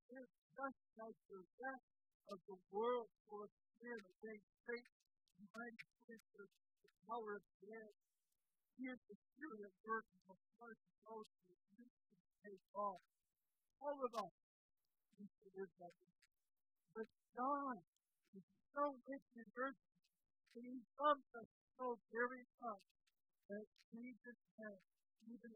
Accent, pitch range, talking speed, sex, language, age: American, 185-240 Hz, 120 wpm, female, English, 50-69